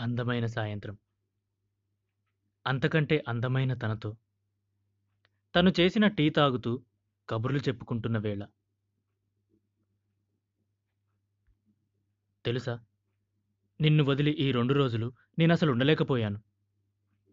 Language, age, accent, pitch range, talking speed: Telugu, 20-39, native, 100-130 Hz, 65 wpm